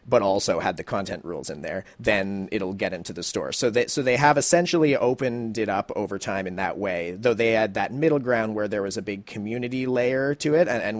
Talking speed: 245 wpm